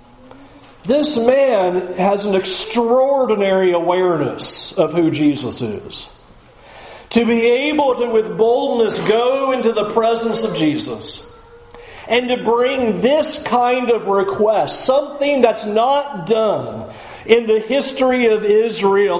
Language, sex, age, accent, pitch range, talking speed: English, male, 50-69, American, 160-245 Hz, 120 wpm